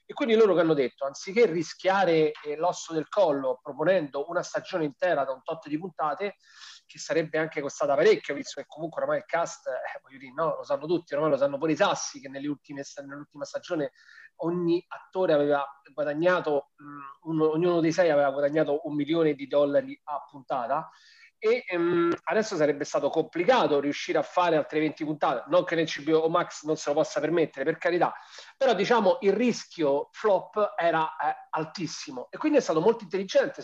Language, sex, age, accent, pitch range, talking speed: Italian, male, 30-49, native, 150-215 Hz, 185 wpm